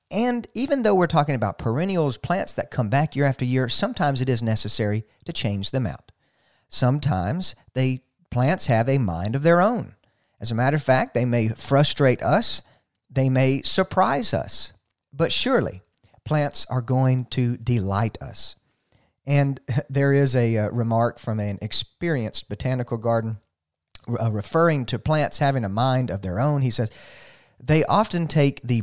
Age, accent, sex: 40-59, American, male